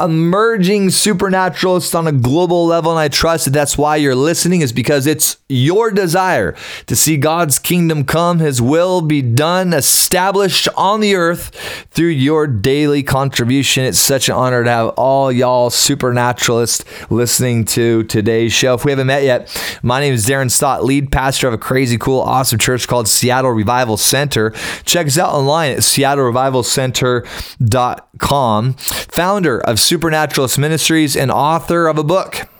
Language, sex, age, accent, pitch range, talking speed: English, male, 30-49, American, 120-160 Hz, 160 wpm